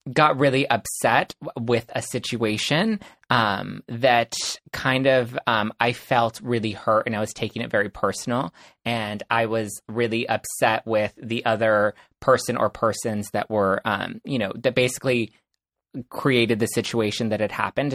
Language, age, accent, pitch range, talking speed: English, 20-39, American, 115-130 Hz, 155 wpm